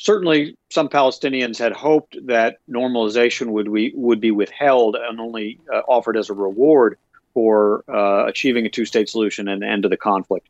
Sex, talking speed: male, 175 wpm